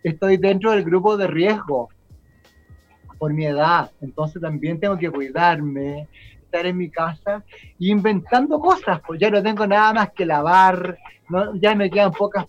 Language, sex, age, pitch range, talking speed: Spanish, male, 30-49, 160-200 Hz, 155 wpm